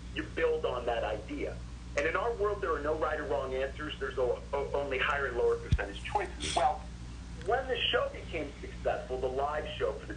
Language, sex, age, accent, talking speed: English, male, 50-69, American, 200 wpm